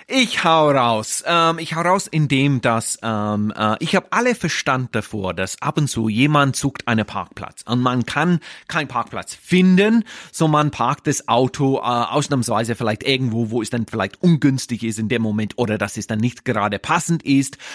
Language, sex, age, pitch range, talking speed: German, male, 30-49, 115-160 Hz, 195 wpm